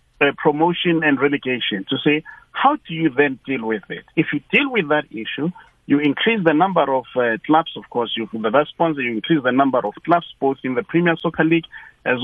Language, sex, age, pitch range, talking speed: English, male, 50-69, 130-165 Hz, 220 wpm